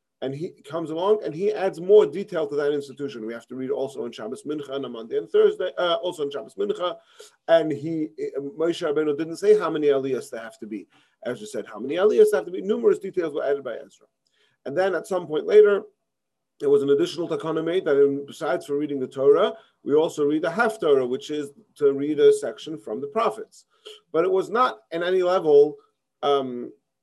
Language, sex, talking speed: English, male, 220 wpm